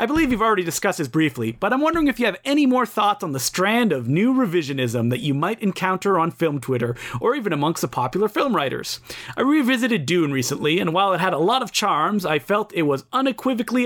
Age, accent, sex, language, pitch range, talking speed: 30-49, American, male, English, 145-220 Hz, 230 wpm